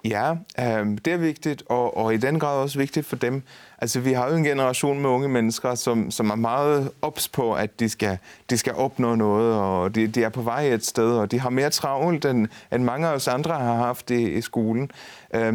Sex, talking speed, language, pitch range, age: male, 200 wpm, Danish, 110-140 Hz, 30-49